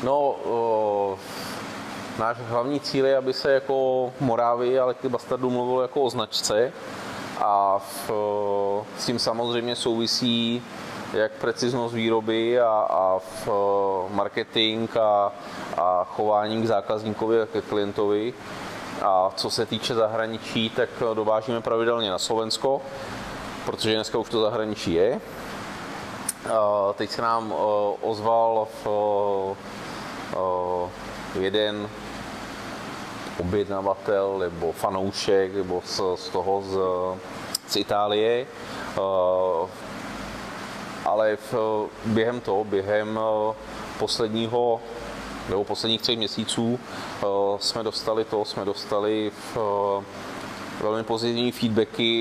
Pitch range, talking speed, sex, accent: 100-115 Hz, 110 wpm, male, native